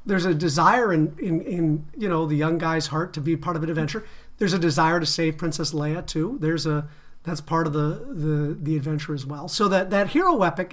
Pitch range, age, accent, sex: 155-185 Hz, 40-59, American, male